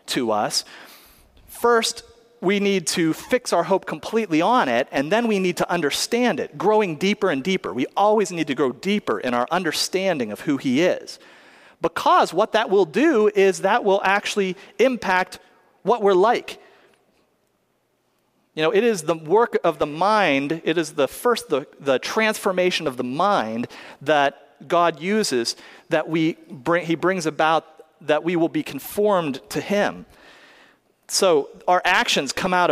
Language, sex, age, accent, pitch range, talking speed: English, male, 40-59, American, 160-210 Hz, 165 wpm